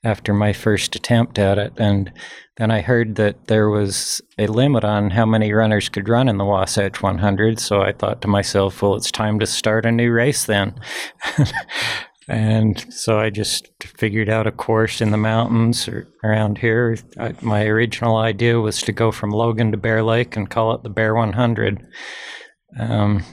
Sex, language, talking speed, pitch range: male, English, 185 wpm, 105-115 Hz